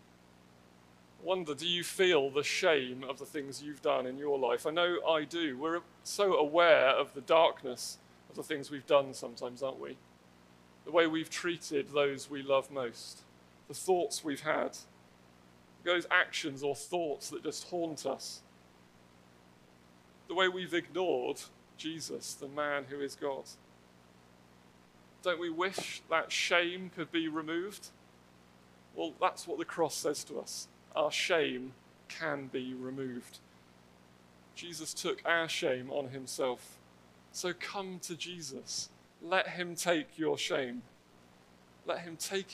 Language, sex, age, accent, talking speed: English, male, 40-59, British, 140 wpm